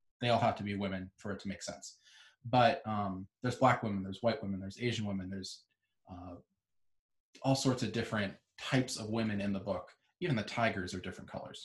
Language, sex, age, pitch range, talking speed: English, male, 20-39, 105-130 Hz, 205 wpm